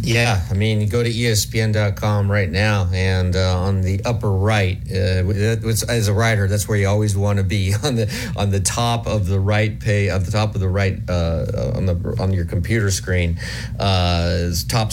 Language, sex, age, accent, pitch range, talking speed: English, male, 30-49, American, 95-115 Hz, 200 wpm